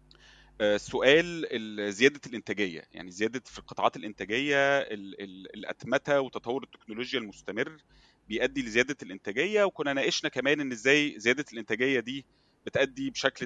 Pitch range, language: 100-135 Hz, Arabic